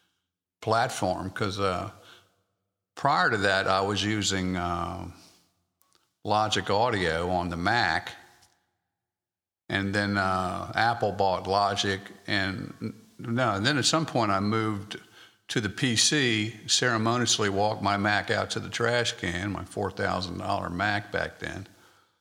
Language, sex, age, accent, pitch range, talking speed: English, male, 50-69, American, 95-110 Hz, 125 wpm